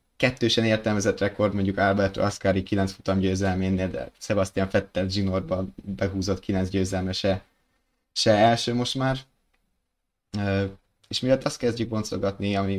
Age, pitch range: 20-39, 90-105 Hz